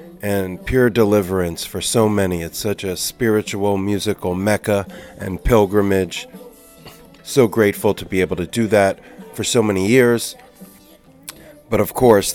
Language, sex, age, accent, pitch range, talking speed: English, male, 40-59, American, 90-105 Hz, 140 wpm